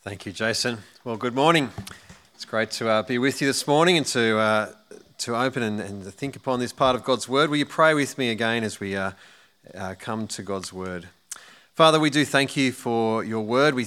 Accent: Australian